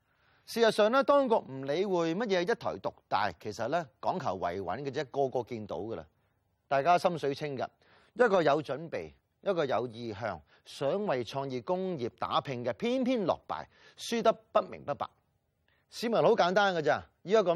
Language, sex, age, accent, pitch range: Chinese, male, 30-49, native, 140-205 Hz